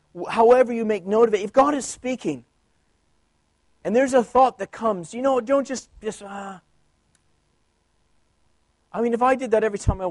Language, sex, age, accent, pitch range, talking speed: English, male, 30-49, American, 180-240 Hz, 185 wpm